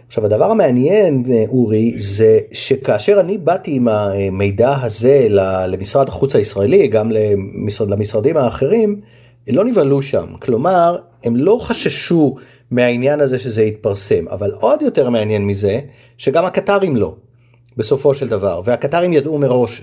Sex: male